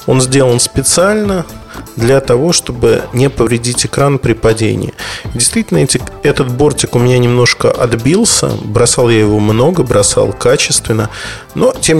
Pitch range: 115-155 Hz